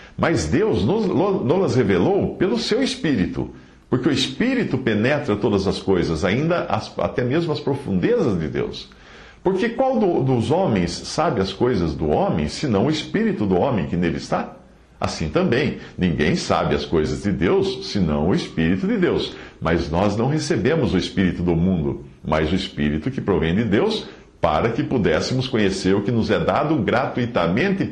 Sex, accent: male, Brazilian